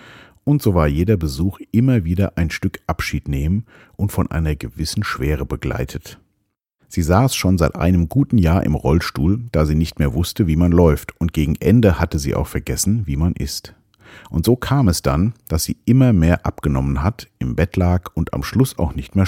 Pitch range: 75-100 Hz